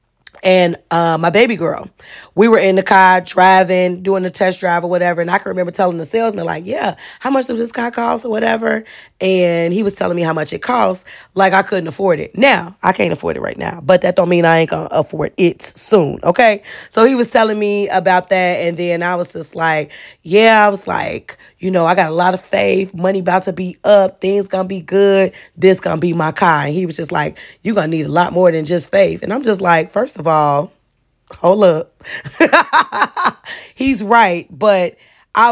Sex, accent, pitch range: female, American, 170-195 Hz